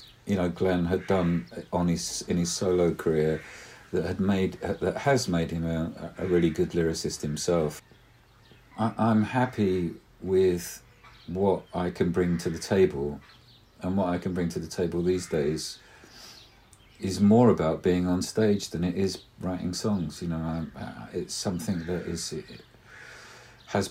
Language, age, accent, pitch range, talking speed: English, 50-69, British, 85-105 Hz, 165 wpm